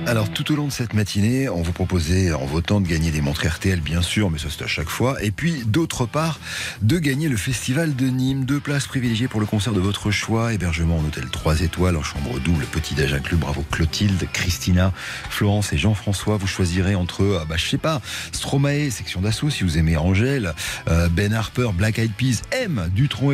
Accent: French